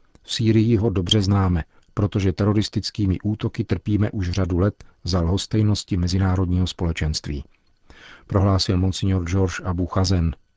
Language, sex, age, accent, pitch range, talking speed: Czech, male, 40-59, native, 90-105 Hz, 120 wpm